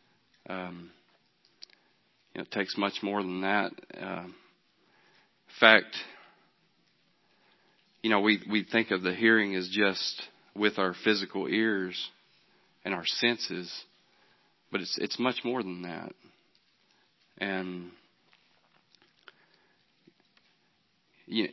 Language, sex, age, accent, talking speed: English, male, 40-59, American, 105 wpm